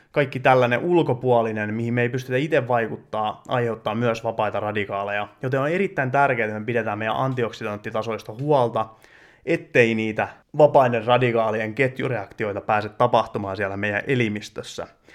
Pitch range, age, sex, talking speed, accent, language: 110-135 Hz, 30-49, male, 130 wpm, native, Finnish